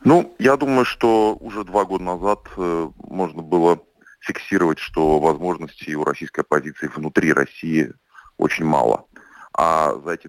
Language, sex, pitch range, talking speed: Russian, male, 80-100 Hz, 135 wpm